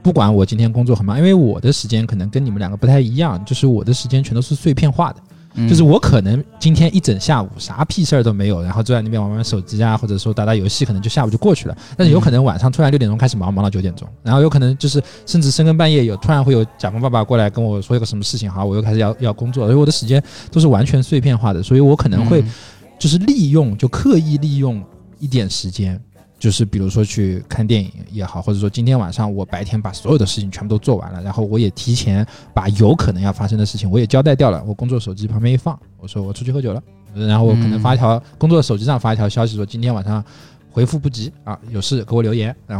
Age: 20-39